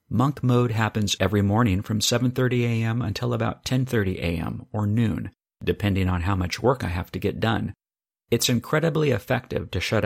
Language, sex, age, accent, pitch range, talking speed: English, male, 40-59, American, 95-120 Hz, 175 wpm